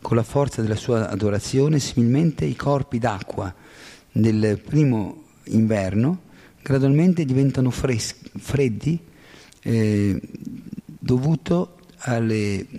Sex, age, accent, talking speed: male, 40-59, native, 95 wpm